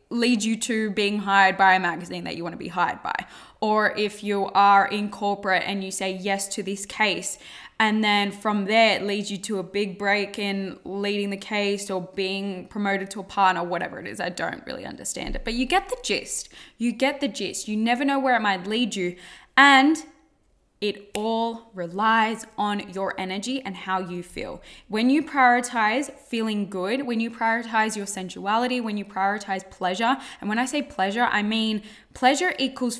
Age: 10-29